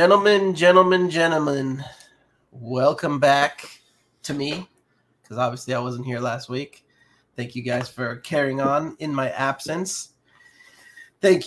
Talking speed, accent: 125 wpm, American